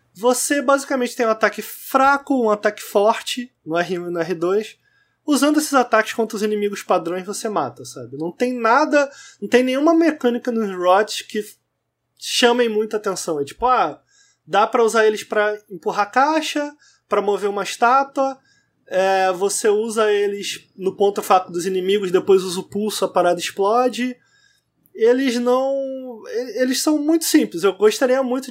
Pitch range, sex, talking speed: 185-260 Hz, male, 160 wpm